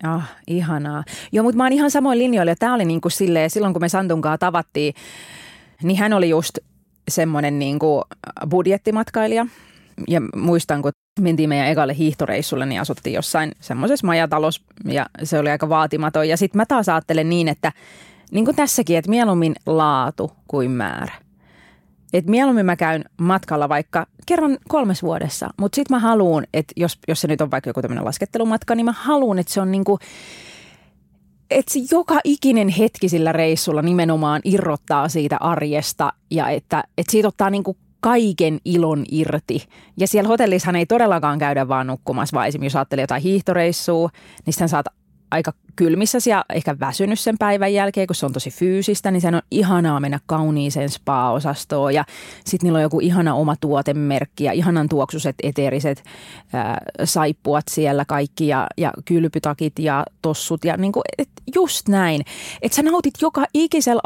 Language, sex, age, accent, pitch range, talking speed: Finnish, female, 30-49, native, 150-200 Hz, 165 wpm